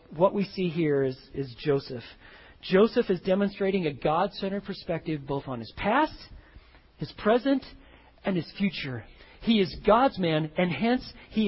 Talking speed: 150 wpm